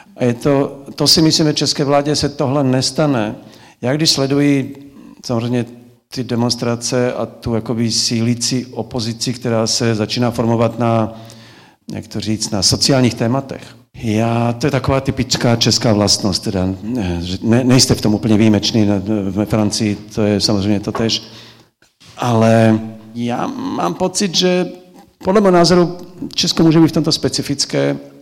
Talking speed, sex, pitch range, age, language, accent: 140 wpm, male, 105-125 Hz, 50-69, Czech, native